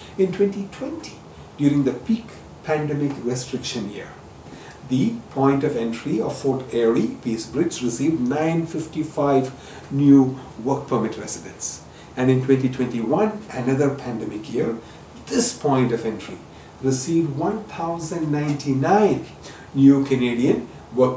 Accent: Indian